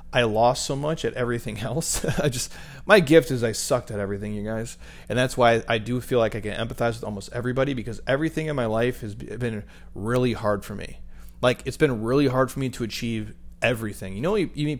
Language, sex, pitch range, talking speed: English, male, 110-135 Hz, 230 wpm